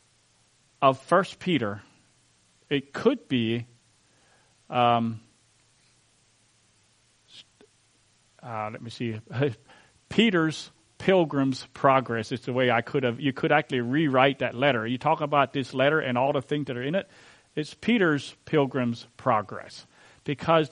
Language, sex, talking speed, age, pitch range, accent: English, male, 125 wpm, 40-59, 115-150 Hz, American